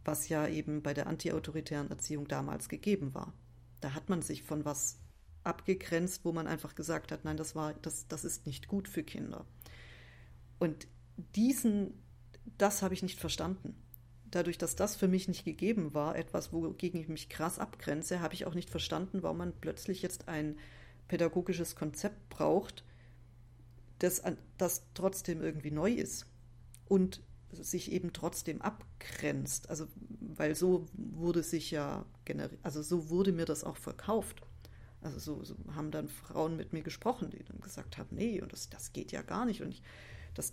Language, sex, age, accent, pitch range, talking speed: German, female, 40-59, German, 145-185 Hz, 170 wpm